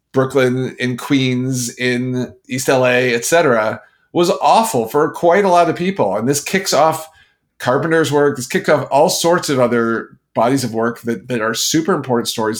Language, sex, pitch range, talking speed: English, male, 120-155 Hz, 175 wpm